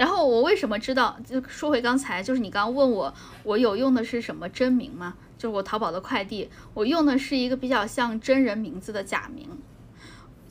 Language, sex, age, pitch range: Chinese, female, 10-29, 210-265 Hz